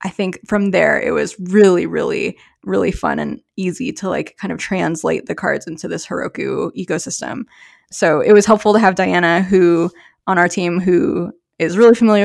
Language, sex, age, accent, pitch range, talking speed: English, female, 20-39, American, 180-220 Hz, 185 wpm